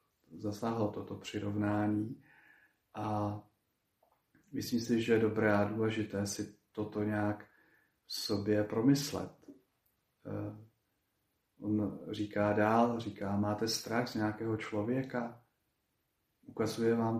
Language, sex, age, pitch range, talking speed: Slovak, male, 40-59, 105-110 Hz, 100 wpm